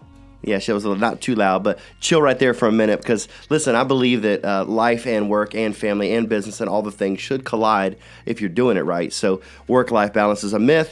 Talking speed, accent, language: 255 wpm, American, English